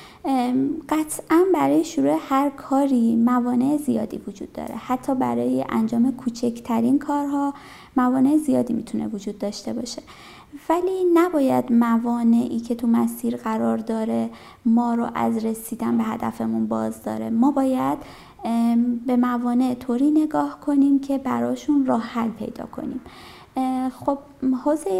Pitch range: 230-290 Hz